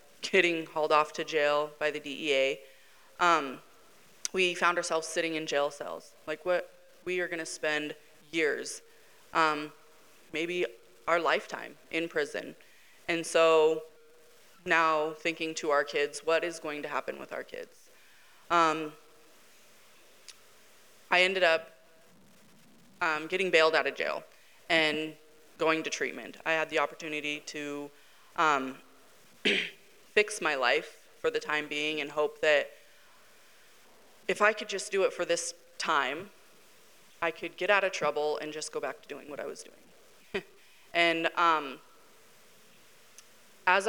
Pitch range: 155-185 Hz